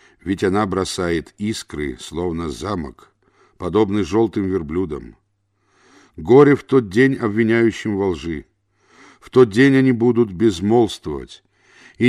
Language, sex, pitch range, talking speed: Russian, male, 95-125 Hz, 115 wpm